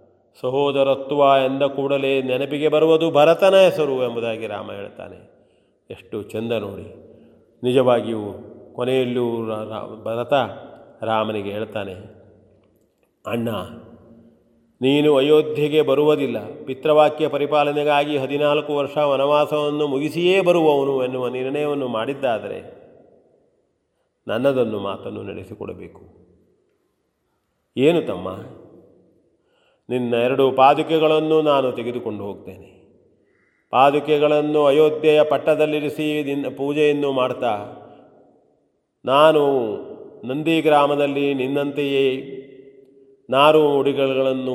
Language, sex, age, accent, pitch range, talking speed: Kannada, male, 30-49, native, 120-150 Hz, 75 wpm